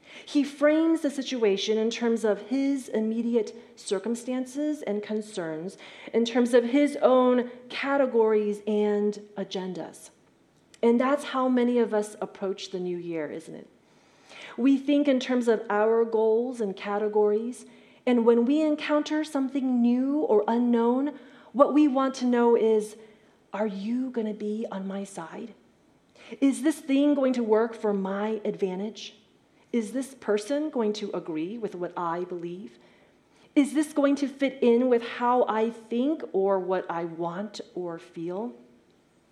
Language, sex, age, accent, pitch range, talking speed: English, female, 30-49, American, 195-250 Hz, 150 wpm